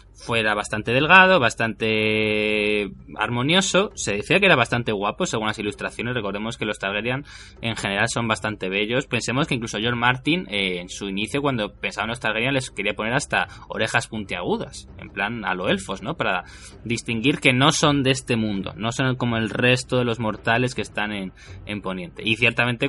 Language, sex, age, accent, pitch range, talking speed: Spanish, male, 20-39, Spanish, 105-130 Hz, 190 wpm